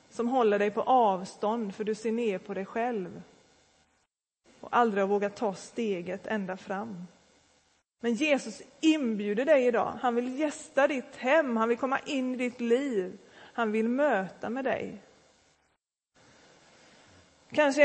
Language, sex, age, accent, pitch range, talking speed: Swedish, female, 30-49, native, 200-240 Hz, 140 wpm